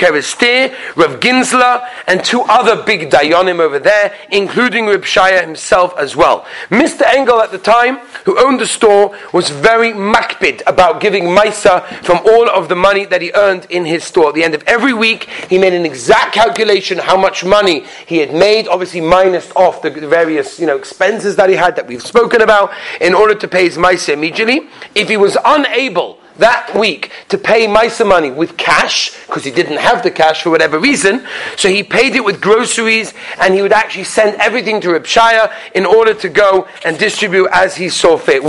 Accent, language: British, English